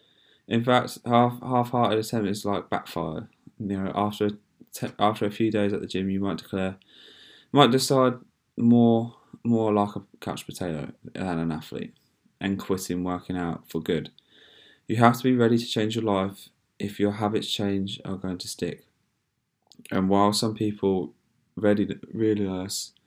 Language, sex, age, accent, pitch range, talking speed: English, male, 10-29, British, 90-110 Hz, 165 wpm